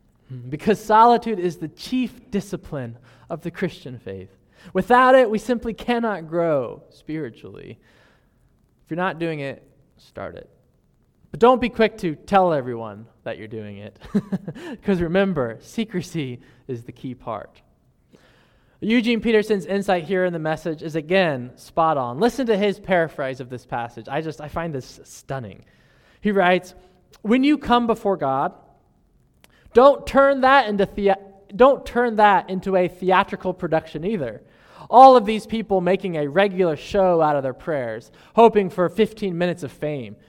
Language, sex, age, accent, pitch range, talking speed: English, male, 20-39, American, 145-210 Hz, 150 wpm